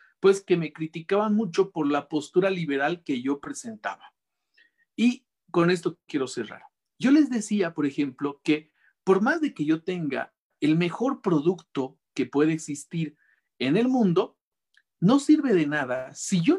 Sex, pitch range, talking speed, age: male, 145-220 Hz, 160 wpm, 50-69